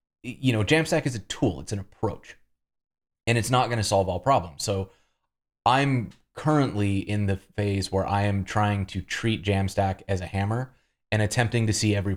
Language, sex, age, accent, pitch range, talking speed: English, male, 30-49, American, 90-110 Hz, 190 wpm